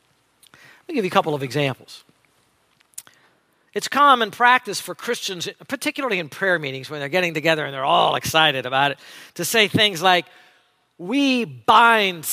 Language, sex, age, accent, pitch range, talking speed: English, male, 50-69, American, 165-260 Hz, 155 wpm